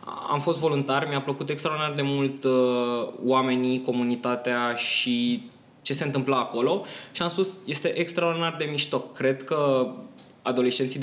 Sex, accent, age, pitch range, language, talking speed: male, native, 20-39, 125-155 Hz, Romanian, 135 wpm